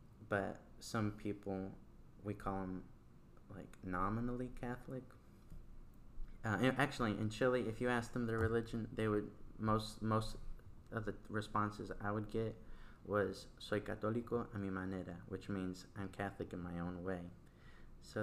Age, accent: 30-49, American